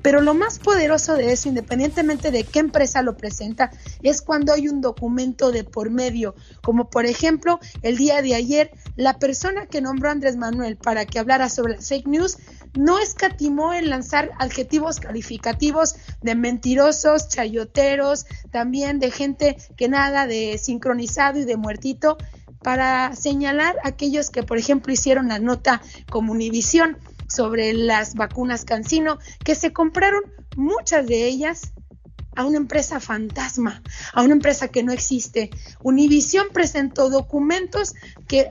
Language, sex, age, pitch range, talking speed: Spanish, female, 30-49, 240-300 Hz, 150 wpm